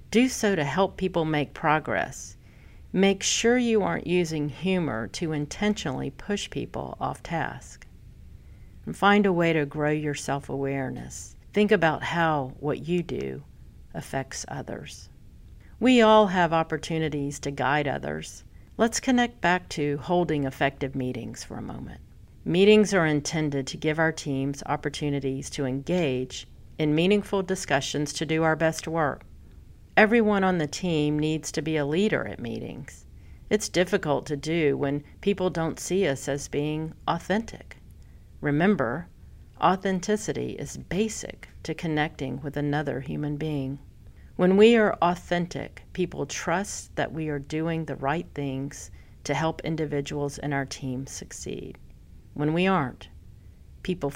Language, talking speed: English, 140 wpm